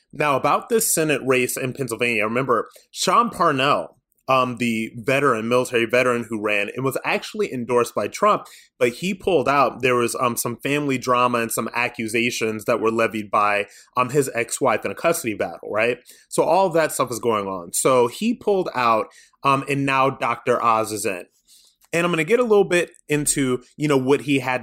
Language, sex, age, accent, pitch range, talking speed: English, male, 30-49, American, 120-160 Hz, 195 wpm